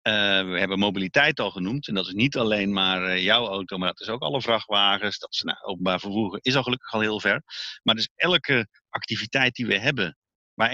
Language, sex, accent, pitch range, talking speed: Dutch, male, Dutch, 100-125 Hz, 220 wpm